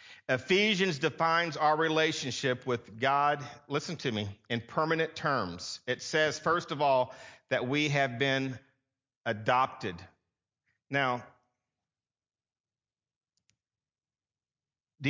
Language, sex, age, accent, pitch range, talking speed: English, male, 50-69, American, 125-160 Hz, 95 wpm